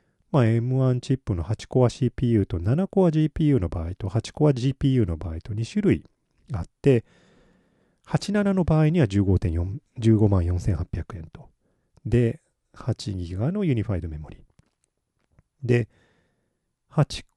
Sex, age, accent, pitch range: male, 40-59, native, 95-140 Hz